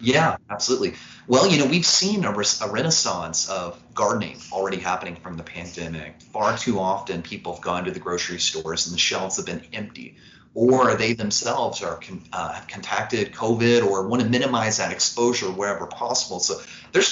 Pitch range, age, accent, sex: 90-125 Hz, 30-49, American, male